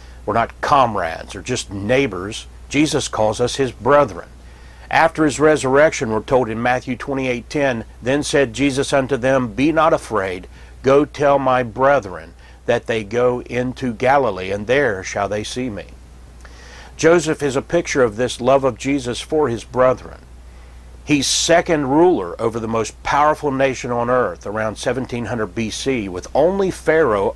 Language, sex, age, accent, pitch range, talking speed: English, male, 50-69, American, 85-140 Hz, 155 wpm